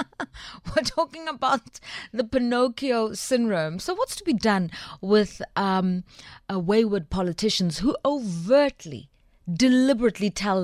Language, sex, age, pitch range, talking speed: English, female, 30-49, 200-275 Hz, 105 wpm